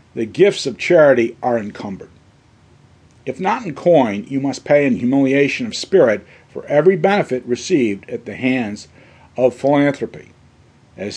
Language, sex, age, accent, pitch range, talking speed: English, male, 50-69, American, 120-150 Hz, 145 wpm